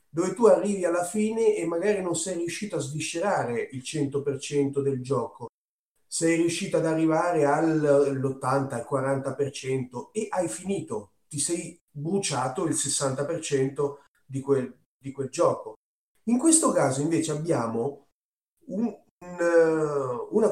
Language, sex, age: Italian, male, 30-49